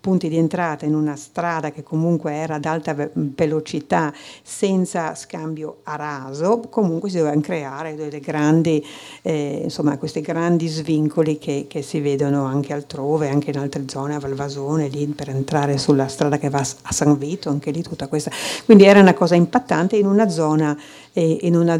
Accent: native